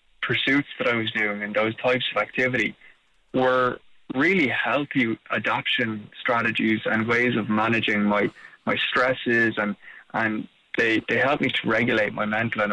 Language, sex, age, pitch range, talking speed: English, male, 20-39, 110-130 Hz, 155 wpm